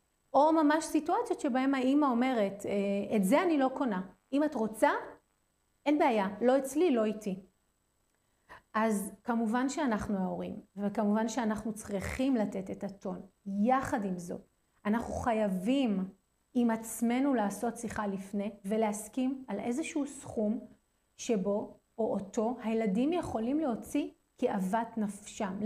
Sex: female